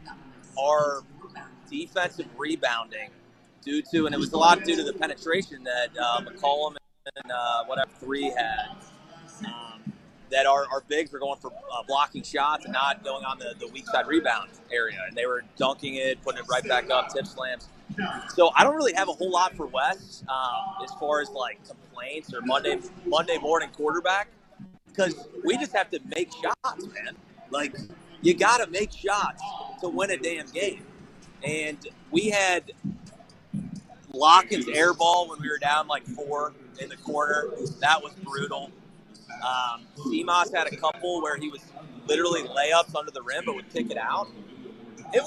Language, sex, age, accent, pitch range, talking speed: English, male, 30-49, American, 140-200 Hz, 175 wpm